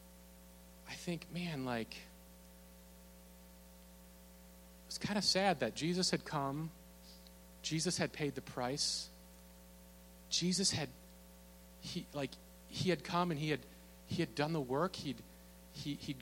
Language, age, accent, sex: English, 30-49, American, male